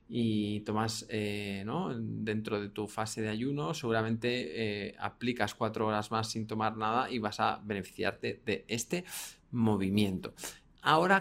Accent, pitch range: Spanish, 115-150 Hz